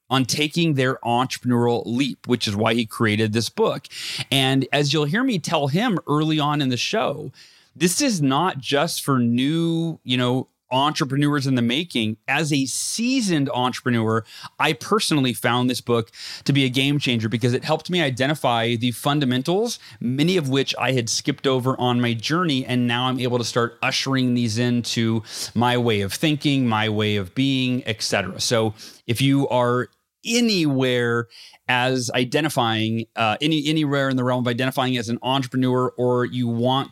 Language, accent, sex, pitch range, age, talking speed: English, American, male, 120-145 Hz, 30-49, 170 wpm